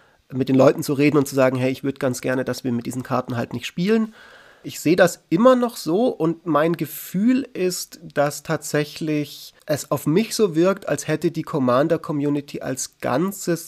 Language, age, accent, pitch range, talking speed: German, 30-49, German, 130-170 Hz, 195 wpm